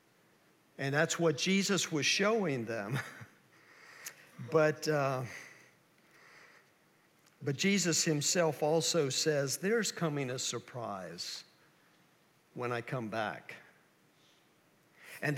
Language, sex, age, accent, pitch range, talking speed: English, male, 50-69, American, 145-190 Hz, 90 wpm